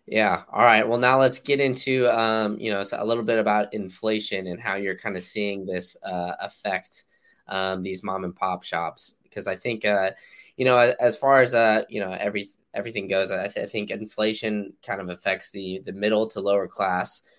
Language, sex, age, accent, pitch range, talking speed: English, male, 10-29, American, 90-110 Hz, 210 wpm